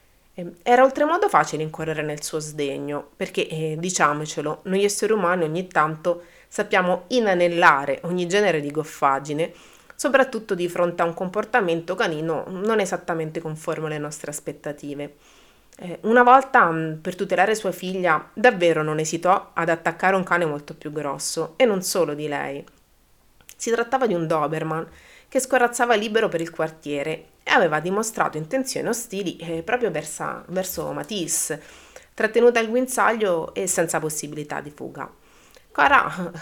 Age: 30-49